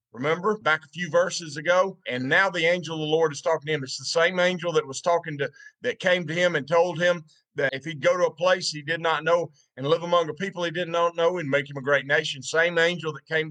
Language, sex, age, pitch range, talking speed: English, male, 50-69, 145-175 Hz, 275 wpm